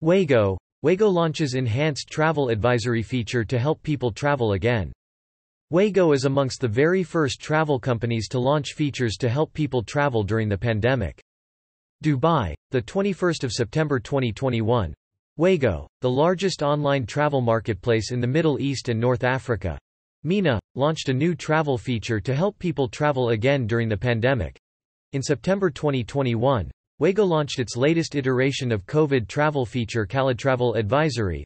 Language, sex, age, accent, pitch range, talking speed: English, male, 40-59, American, 115-150 Hz, 150 wpm